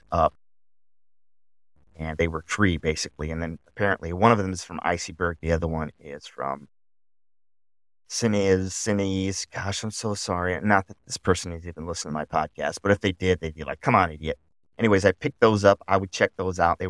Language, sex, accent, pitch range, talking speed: English, male, American, 85-100 Hz, 200 wpm